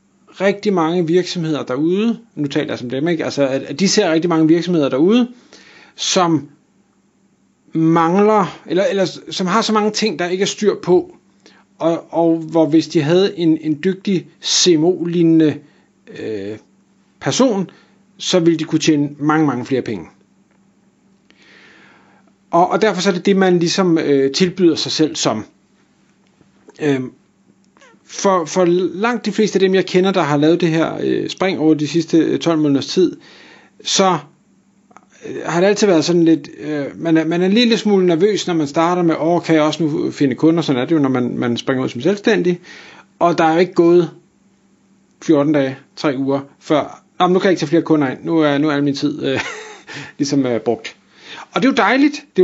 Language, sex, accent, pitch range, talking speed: Danish, male, native, 155-195 Hz, 190 wpm